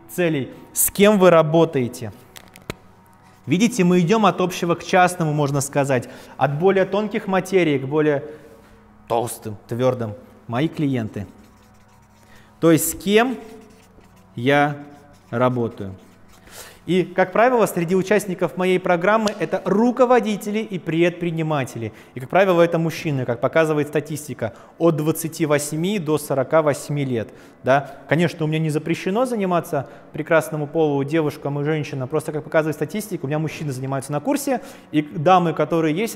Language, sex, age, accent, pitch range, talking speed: Russian, male, 20-39, native, 130-185 Hz, 130 wpm